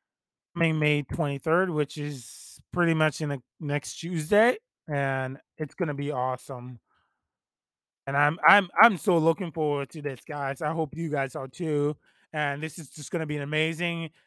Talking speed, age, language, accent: 175 wpm, 20-39, English, American